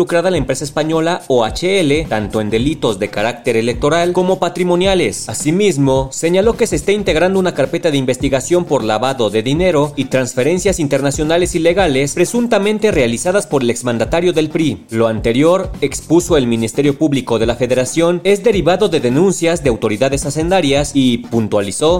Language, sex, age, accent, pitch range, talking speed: Spanish, male, 30-49, Mexican, 130-175 Hz, 150 wpm